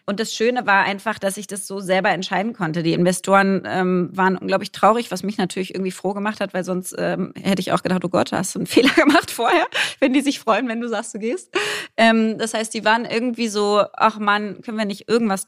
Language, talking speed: German, 245 wpm